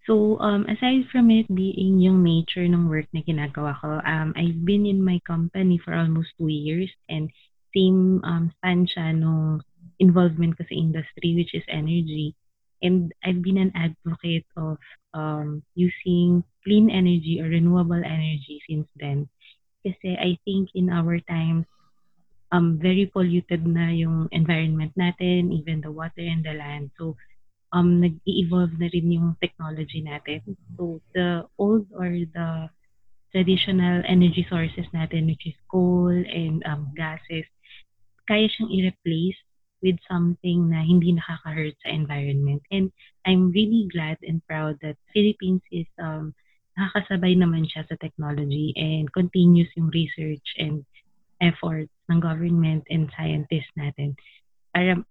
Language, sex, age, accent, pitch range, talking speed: Filipino, female, 20-39, native, 155-180 Hz, 135 wpm